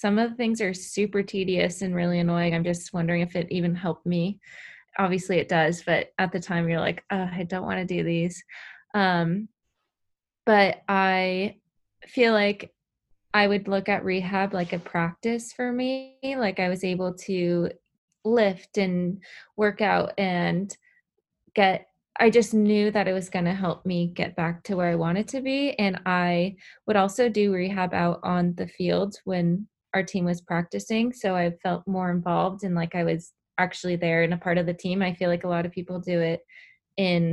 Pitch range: 175-200 Hz